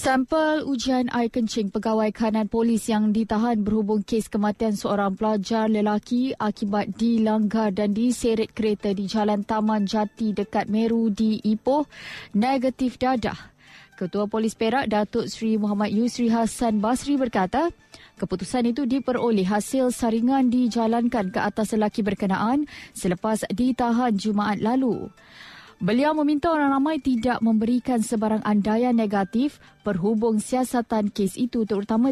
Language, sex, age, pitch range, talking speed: Malay, female, 20-39, 215-250 Hz, 125 wpm